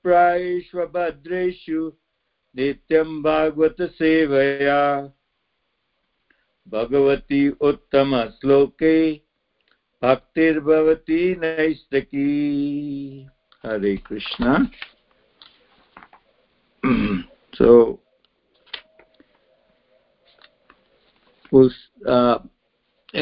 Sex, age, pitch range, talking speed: male, 60-79, 125-150 Hz, 35 wpm